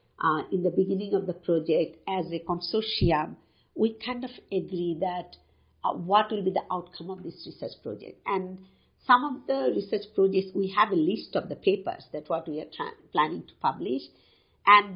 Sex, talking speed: female, 185 wpm